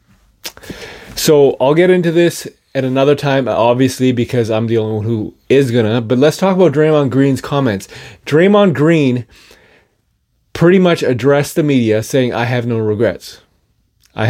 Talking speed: 160 wpm